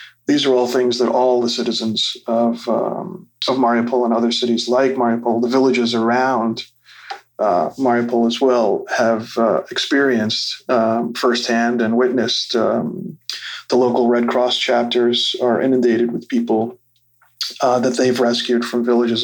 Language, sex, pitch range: English, male, 115-125 Hz